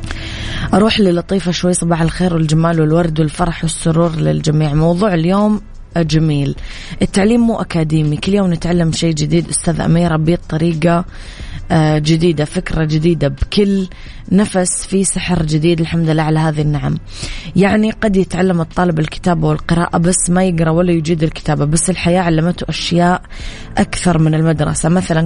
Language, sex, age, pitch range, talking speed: Arabic, female, 20-39, 150-180 Hz, 140 wpm